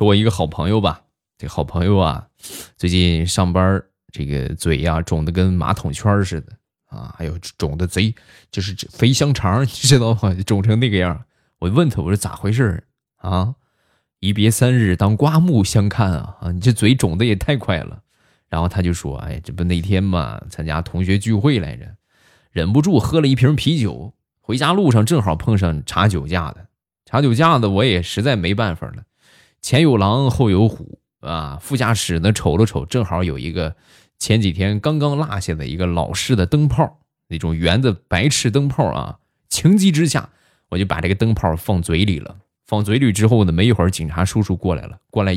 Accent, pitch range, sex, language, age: native, 90-125 Hz, male, Chinese, 20-39